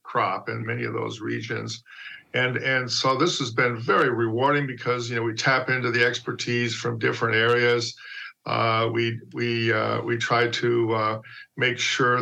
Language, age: English, 50-69